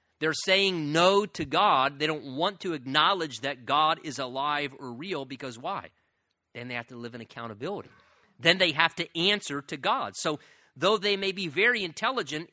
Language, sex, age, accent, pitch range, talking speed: English, male, 40-59, American, 120-160 Hz, 185 wpm